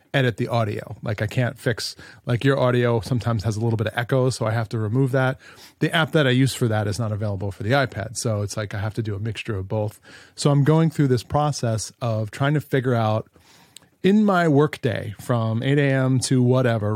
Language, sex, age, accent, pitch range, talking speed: English, male, 30-49, American, 115-135 Hz, 235 wpm